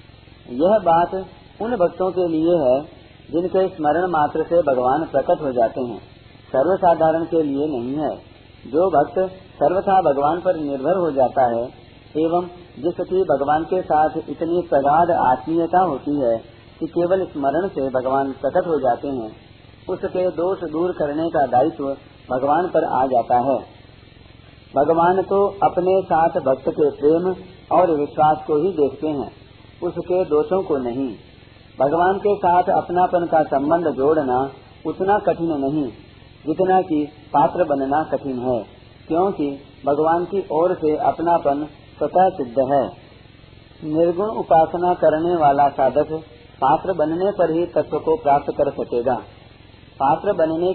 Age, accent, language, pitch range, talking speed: 40-59, native, Hindi, 130-175 Hz, 140 wpm